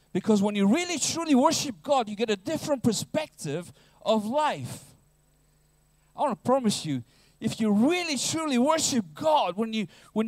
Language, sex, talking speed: English, male, 150 wpm